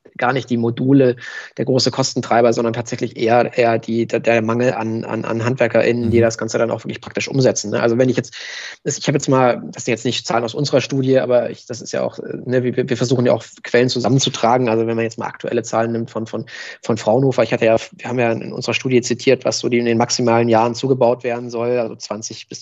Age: 20-39